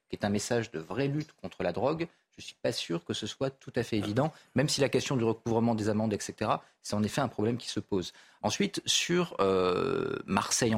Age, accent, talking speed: 40-59, French, 240 wpm